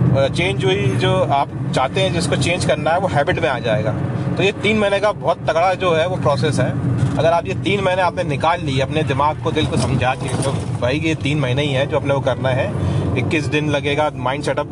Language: Hindi